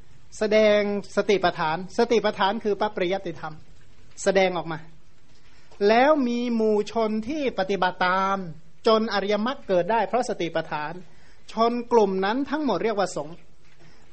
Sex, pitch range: male, 185-230 Hz